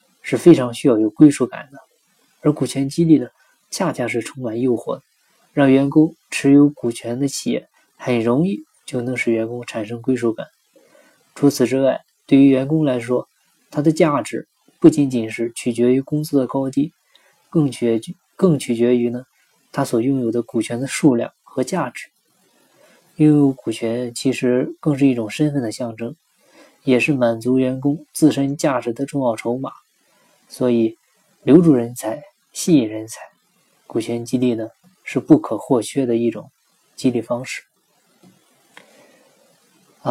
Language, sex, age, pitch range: Chinese, male, 20-39, 120-145 Hz